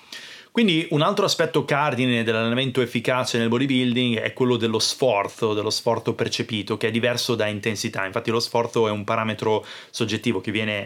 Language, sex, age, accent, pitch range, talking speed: Italian, male, 30-49, native, 105-120 Hz, 165 wpm